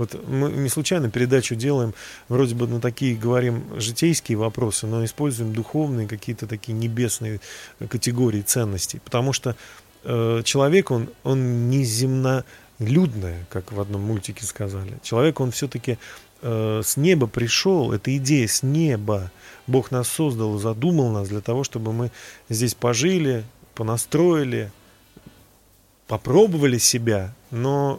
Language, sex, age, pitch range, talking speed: Russian, male, 30-49, 110-135 Hz, 130 wpm